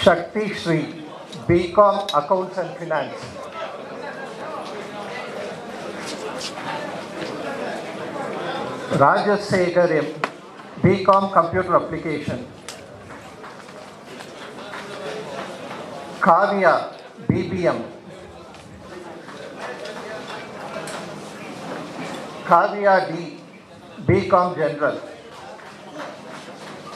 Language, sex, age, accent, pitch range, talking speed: Tamil, male, 50-69, native, 155-195 Hz, 40 wpm